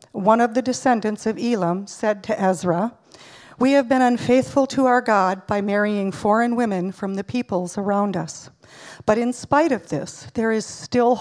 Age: 50-69